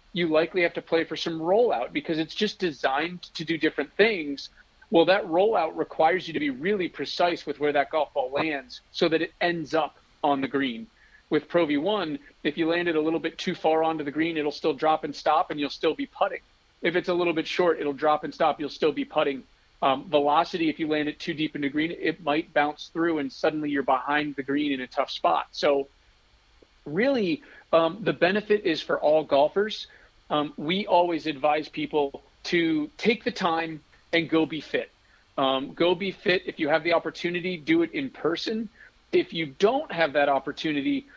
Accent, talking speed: American, 210 wpm